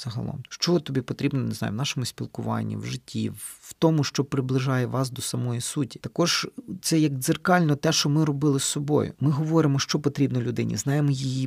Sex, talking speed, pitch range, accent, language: male, 190 wpm, 130-155 Hz, native, Ukrainian